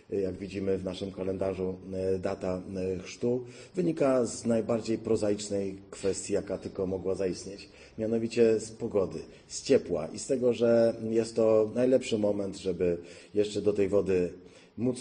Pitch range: 100-120 Hz